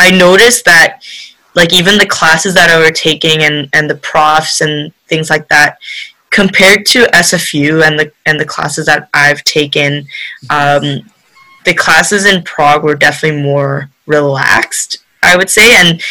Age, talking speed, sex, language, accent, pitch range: 10-29, 160 wpm, female, English, American, 155-195 Hz